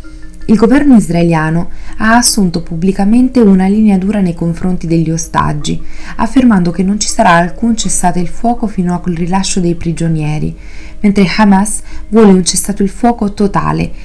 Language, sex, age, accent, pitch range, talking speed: Italian, female, 20-39, native, 160-195 Hz, 150 wpm